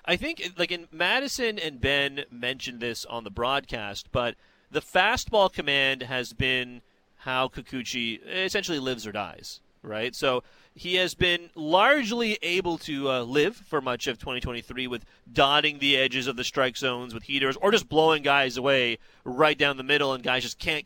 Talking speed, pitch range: 175 wpm, 125-170 Hz